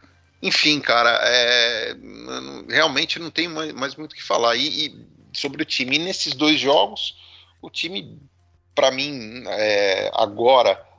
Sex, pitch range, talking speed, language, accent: male, 105-140 Hz, 145 wpm, Portuguese, Brazilian